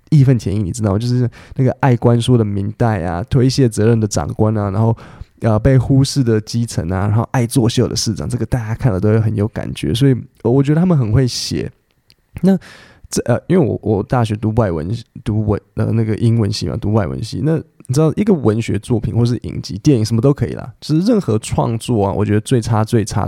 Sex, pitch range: male, 105-130 Hz